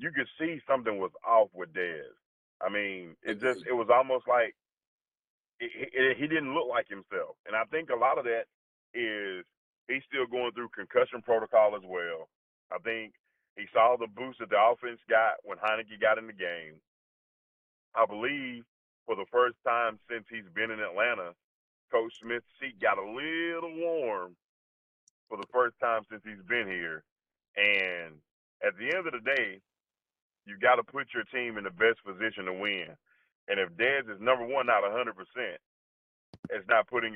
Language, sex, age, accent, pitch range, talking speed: English, male, 40-59, American, 95-140 Hz, 175 wpm